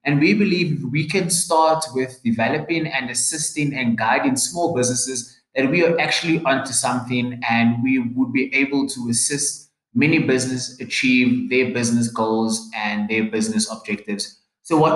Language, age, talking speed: English, 20-39, 155 wpm